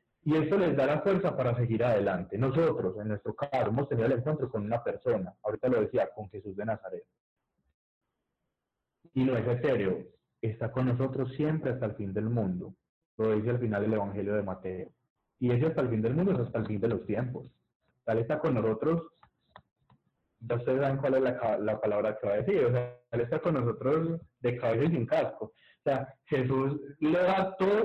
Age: 30-49